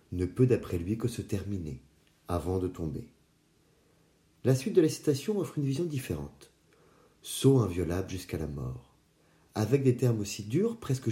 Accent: French